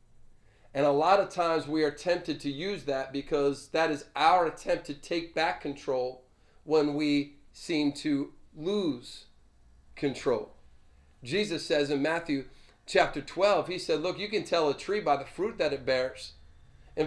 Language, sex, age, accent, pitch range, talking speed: English, male, 40-59, American, 140-175 Hz, 165 wpm